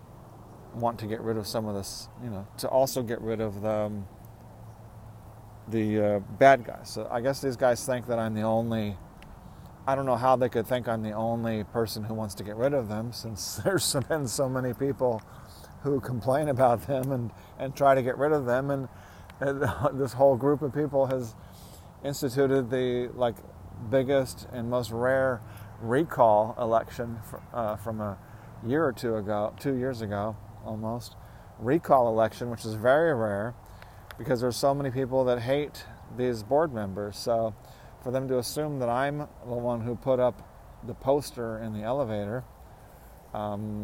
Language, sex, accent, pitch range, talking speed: English, male, American, 105-125 Hz, 175 wpm